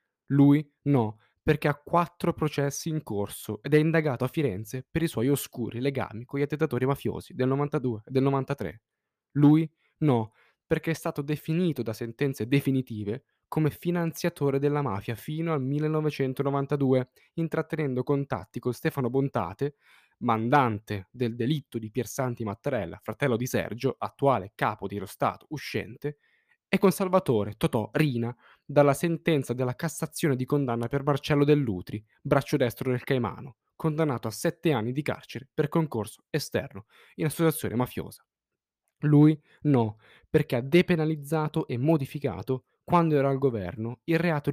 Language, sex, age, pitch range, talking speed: Italian, male, 10-29, 120-155 Hz, 145 wpm